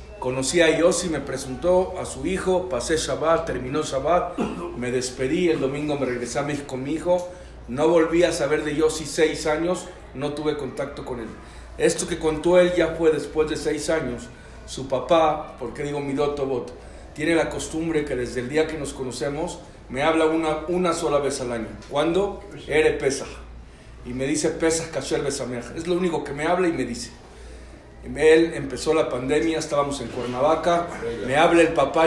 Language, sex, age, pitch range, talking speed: Spanish, male, 50-69, 135-165 Hz, 185 wpm